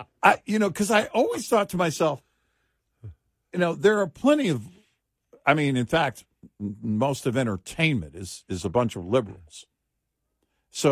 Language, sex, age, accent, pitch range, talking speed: English, male, 50-69, American, 95-135 Hz, 160 wpm